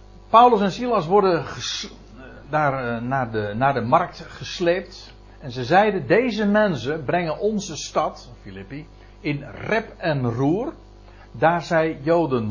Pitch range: 110-145 Hz